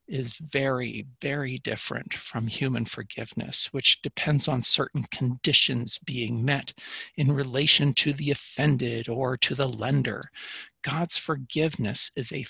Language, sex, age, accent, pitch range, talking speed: English, male, 50-69, American, 125-165 Hz, 130 wpm